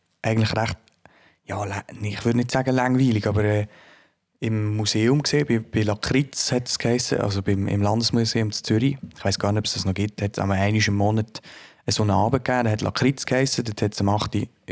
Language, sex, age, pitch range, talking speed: German, male, 20-39, 100-120 Hz, 220 wpm